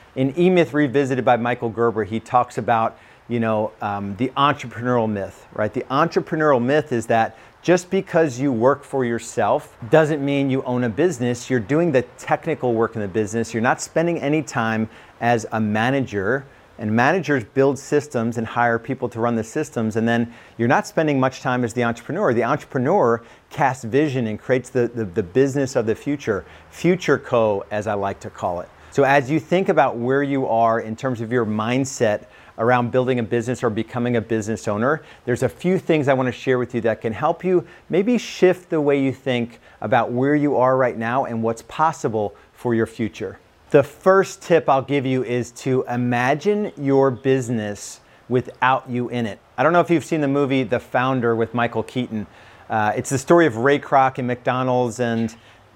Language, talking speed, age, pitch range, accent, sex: English, 195 wpm, 40-59, 115-140 Hz, American, male